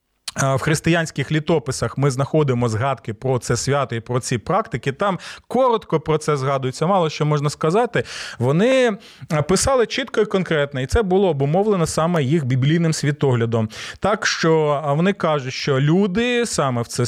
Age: 30-49